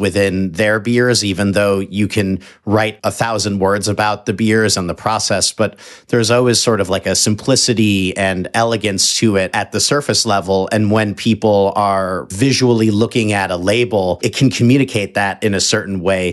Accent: American